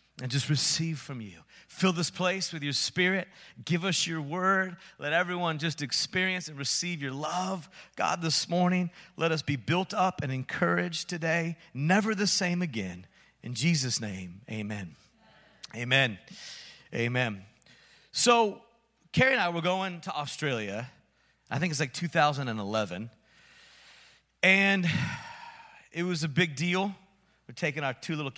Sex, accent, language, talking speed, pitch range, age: male, American, English, 145 wpm, 125-180 Hz, 40-59